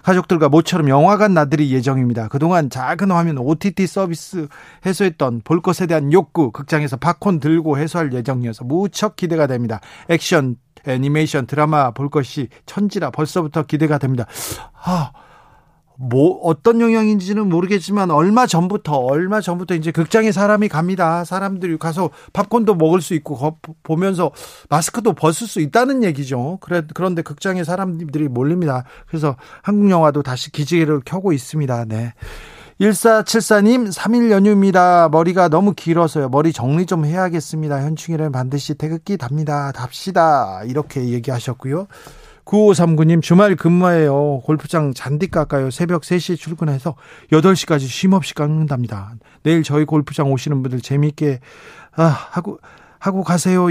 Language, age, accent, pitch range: Korean, 40-59, native, 145-185 Hz